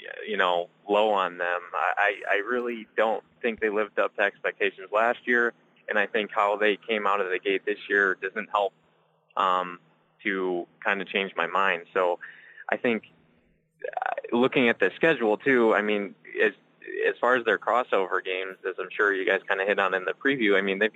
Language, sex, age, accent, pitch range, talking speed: English, male, 20-39, American, 95-120 Hz, 200 wpm